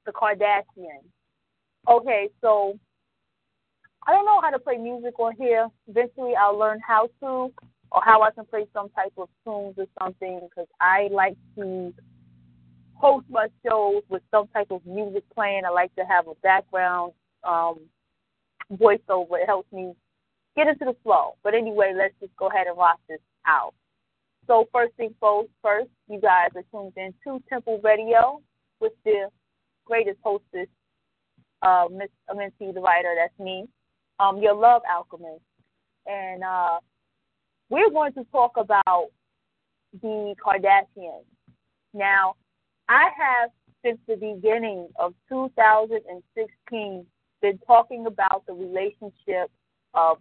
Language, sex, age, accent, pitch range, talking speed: English, female, 20-39, American, 185-230 Hz, 140 wpm